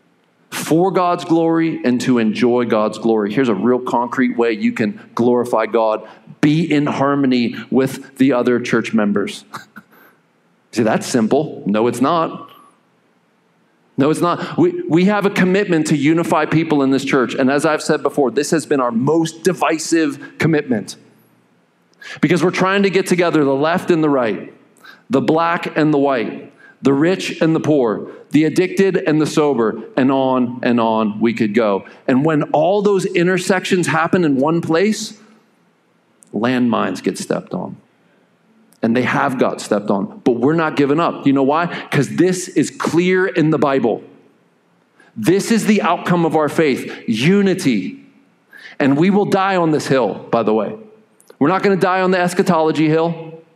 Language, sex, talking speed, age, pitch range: English, male, 170 wpm, 40-59, 135-180 Hz